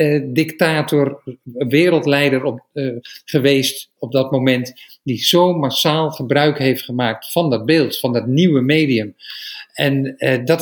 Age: 50-69